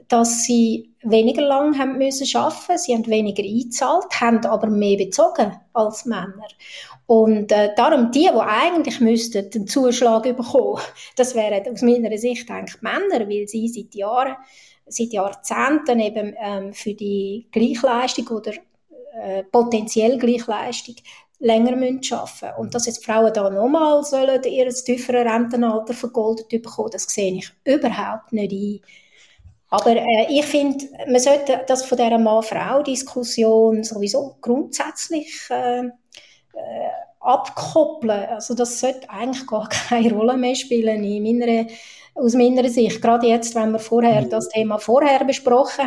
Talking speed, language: 145 wpm, German